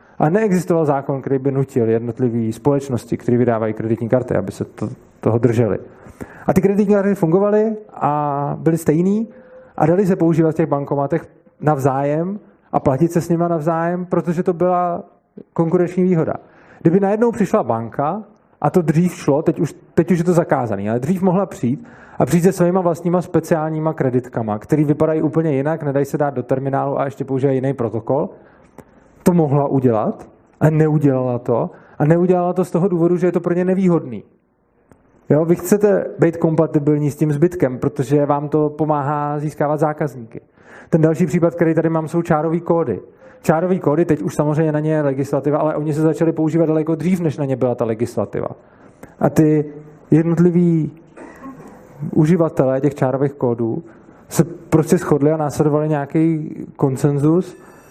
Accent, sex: native, male